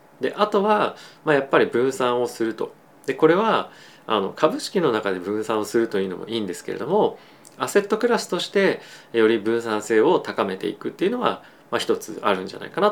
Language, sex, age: Japanese, male, 20-39